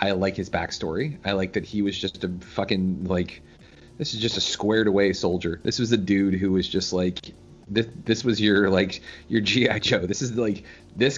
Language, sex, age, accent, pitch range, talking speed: English, male, 30-49, American, 90-115 Hz, 215 wpm